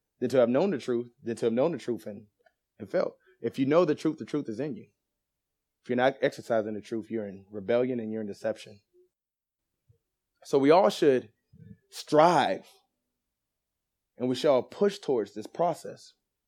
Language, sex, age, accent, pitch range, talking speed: English, male, 20-39, American, 115-175 Hz, 185 wpm